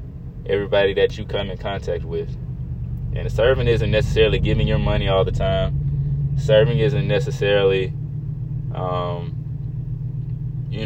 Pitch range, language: 105-140 Hz, English